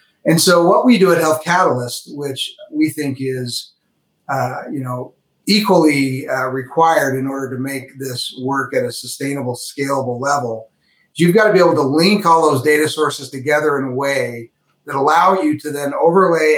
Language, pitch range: English, 135-165 Hz